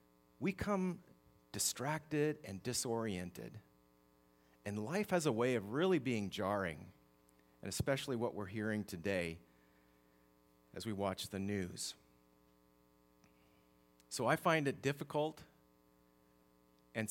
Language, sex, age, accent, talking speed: English, male, 40-59, American, 110 wpm